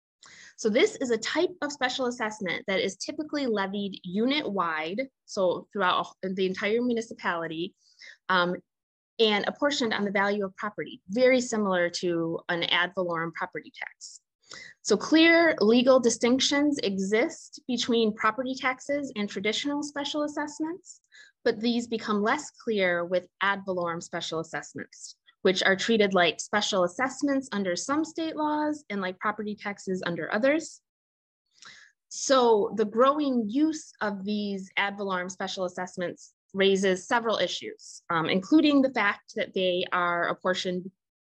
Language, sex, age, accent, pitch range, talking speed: English, female, 20-39, American, 185-260 Hz, 135 wpm